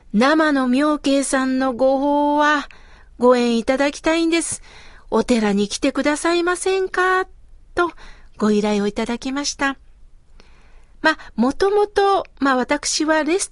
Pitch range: 230-320 Hz